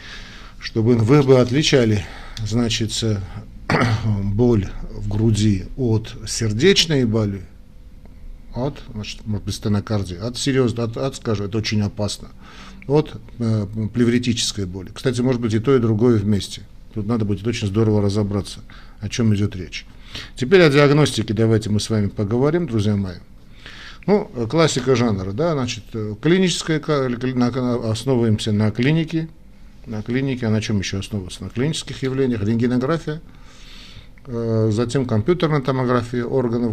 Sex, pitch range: male, 105-125 Hz